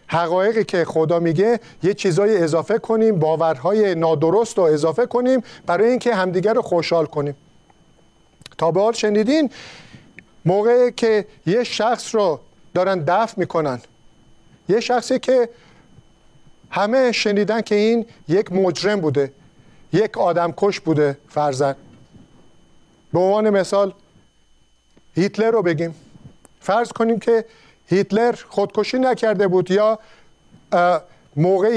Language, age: Persian, 50-69